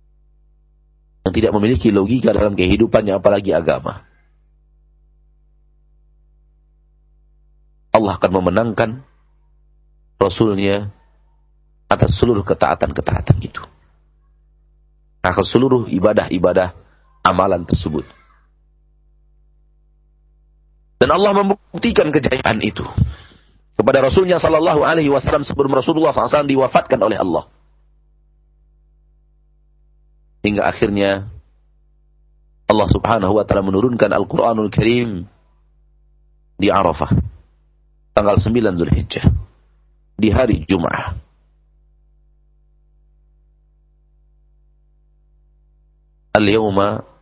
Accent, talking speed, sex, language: Indonesian, 65 wpm, male, English